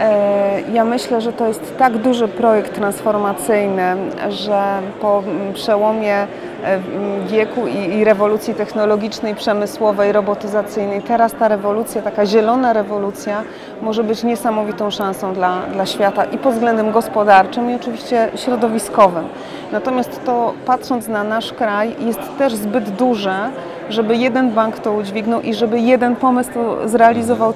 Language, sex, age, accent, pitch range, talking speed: Polish, female, 30-49, native, 205-230 Hz, 130 wpm